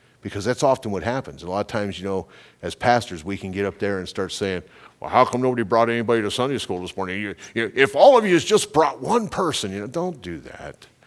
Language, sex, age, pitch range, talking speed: English, male, 50-69, 95-125 Hz, 250 wpm